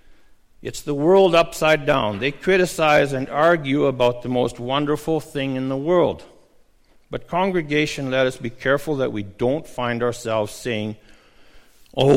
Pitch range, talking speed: 120-150 Hz, 150 wpm